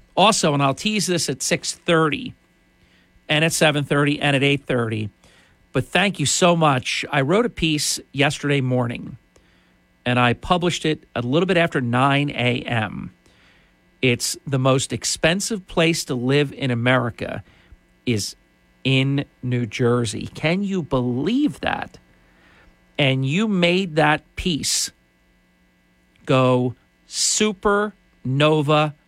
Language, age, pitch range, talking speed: English, 50-69, 105-155 Hz, 120 wpm